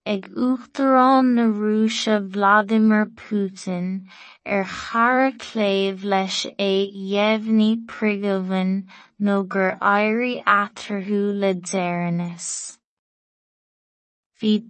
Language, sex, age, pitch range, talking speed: English, female, 20-39, 195-225 Hz, 80 wpm